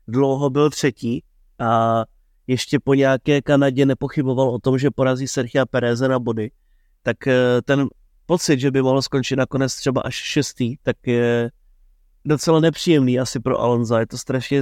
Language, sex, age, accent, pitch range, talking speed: Czech, male, 30-49, native, 125-140 Hz, 155 wpm